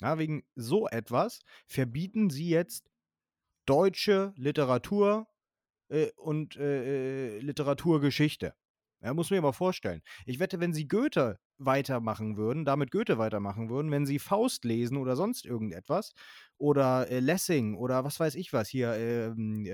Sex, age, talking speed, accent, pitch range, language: male, 30-49, 145 wpm, German, 125-180 Hz, German